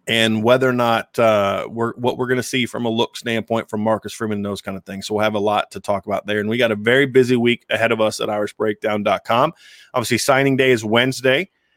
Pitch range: 110-130 Hz